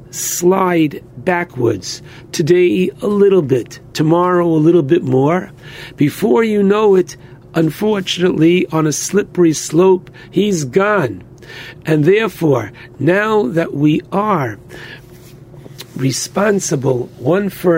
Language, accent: English, American